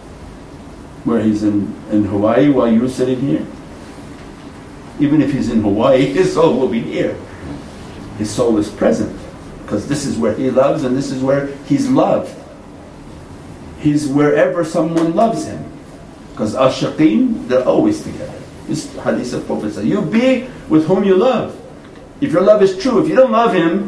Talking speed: 165 wpm